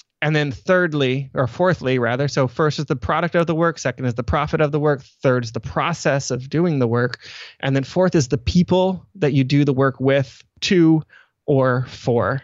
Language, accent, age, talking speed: English, American, 20-39, 210 wpm